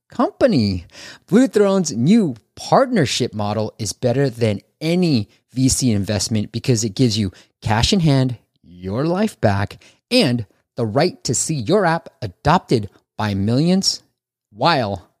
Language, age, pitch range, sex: English, 30-49, 115-185 Hz, male